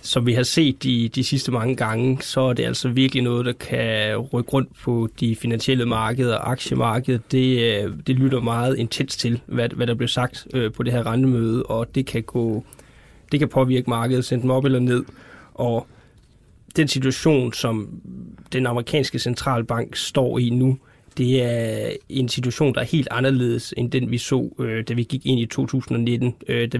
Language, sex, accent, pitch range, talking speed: Danish, male, native, 115-130 Hz, 180 wpm